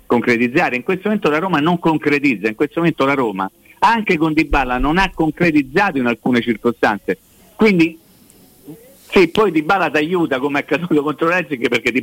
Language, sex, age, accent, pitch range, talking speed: Italian, male, 50-69, native, 125-170 Hz, 185 wpm